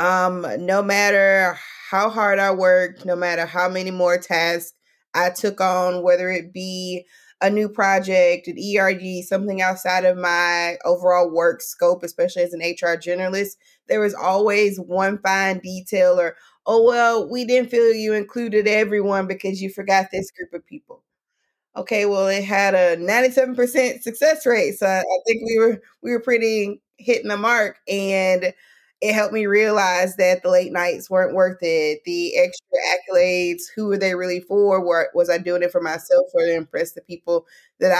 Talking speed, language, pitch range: 170 wpm, English, 175-210 Hz